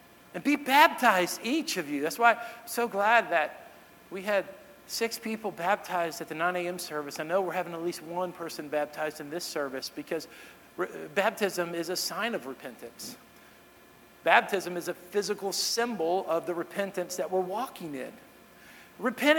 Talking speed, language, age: 165 wpm, English, 50-69